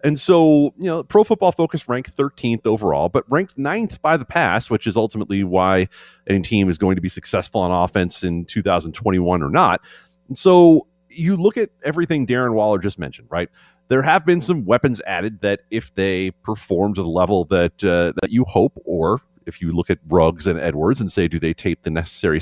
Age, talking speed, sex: 30-49, 205 wpm, male